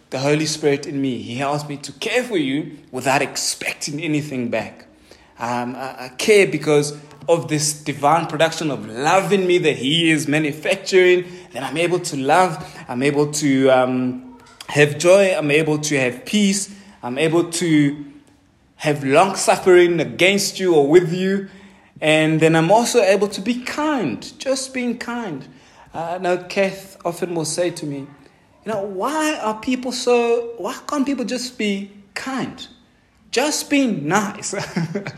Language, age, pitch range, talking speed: English, 20-39, 145-205 Hz, 160 wpm